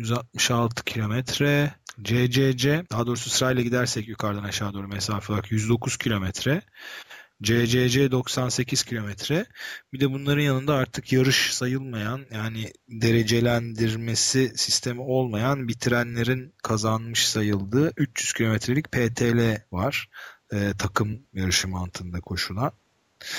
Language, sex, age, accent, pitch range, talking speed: Turkish, male, 40-59, native, 100-125 Hz, 105 wpm